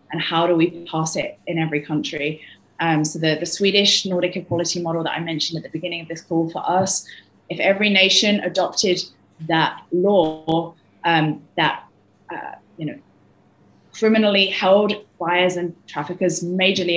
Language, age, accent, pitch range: English, 20-39, British, 160-185 Hz